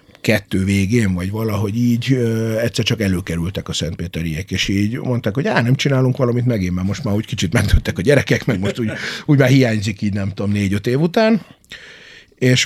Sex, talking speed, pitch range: male, 195 wpm, 95-125 Hz